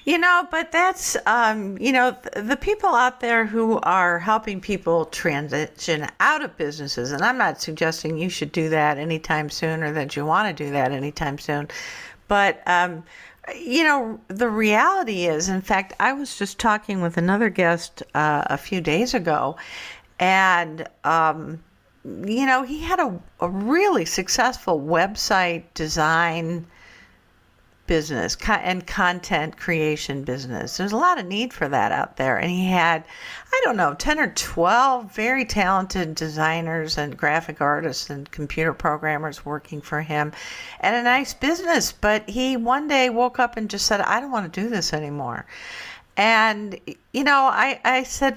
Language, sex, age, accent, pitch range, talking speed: English, female, 50-69, American, 160-240 Hz, 165 wpm